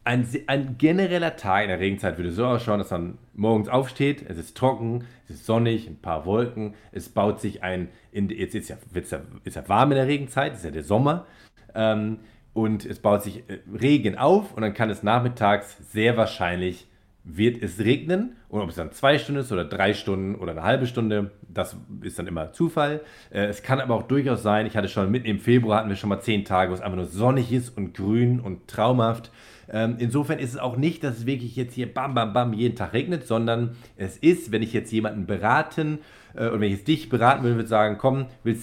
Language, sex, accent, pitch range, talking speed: German, male, German, 100-125 Hz, 220 wpm